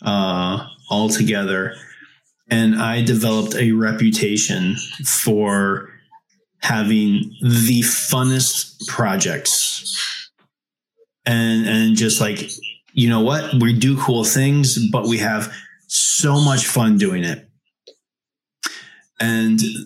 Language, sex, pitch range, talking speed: English, male, 110-150 Hz, 100 wpm